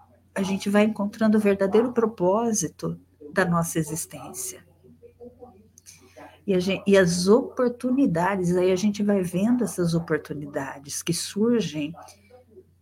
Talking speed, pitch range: 115 wpm, 155-195 Hz